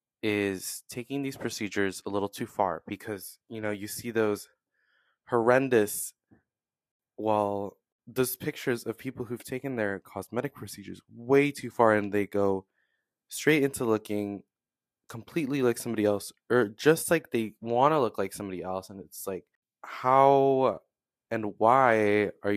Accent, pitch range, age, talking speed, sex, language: American, 95-120 Hz, 20-39, 145 wpm, male, English